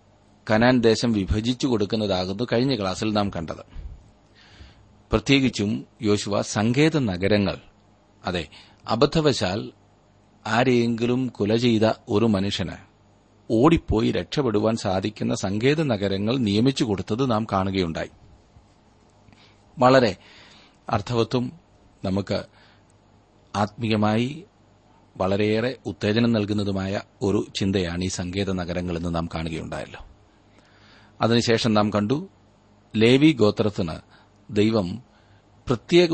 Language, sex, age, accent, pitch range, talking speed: Malayalam, male, 30-49, native, 100-115 Hz, 80 wpm